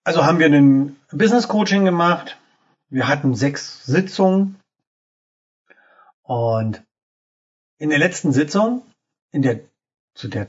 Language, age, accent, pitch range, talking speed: German, 40-59, German, 125-175 Hz, 110 wpm